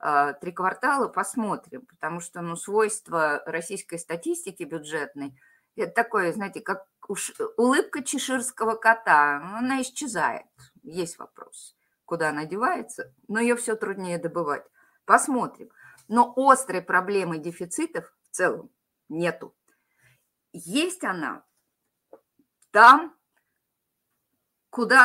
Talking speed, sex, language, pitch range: 100 wpm, female, Russian, 165-255 Hz